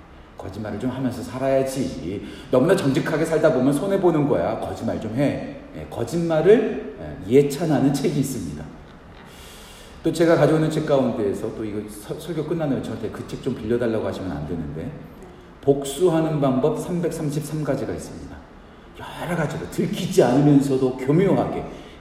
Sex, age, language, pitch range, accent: male, 40-59, Korean, 110-150 Hz, native